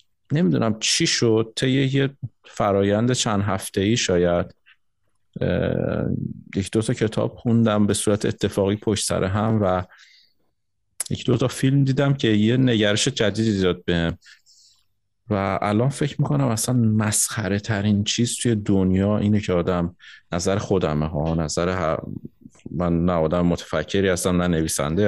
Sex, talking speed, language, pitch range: male, 135 wpm, Persian, 95-115 Hz